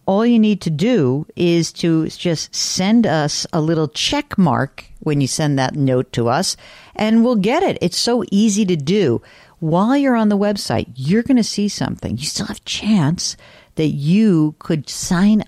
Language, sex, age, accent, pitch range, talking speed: English, female, 50-69, American, 140-195 Hz, 190 wpm